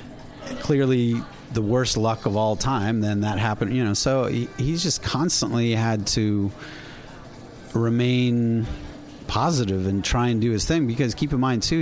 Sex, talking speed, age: male, 155 wpm, 40-59